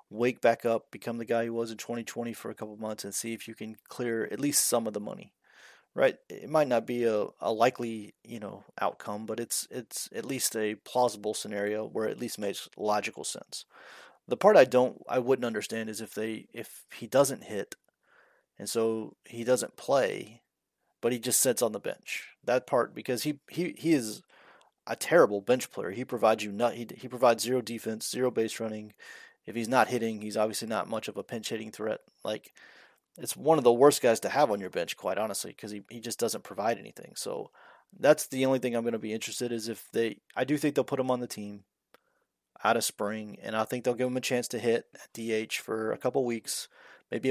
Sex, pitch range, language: male, 110-125 Hz, English